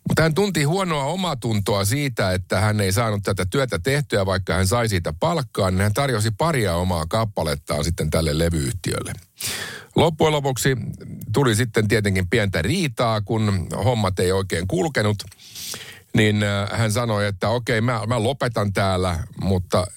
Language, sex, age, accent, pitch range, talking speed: Finnish, male, 50-69, native, 95-125 Hz, 150 wpm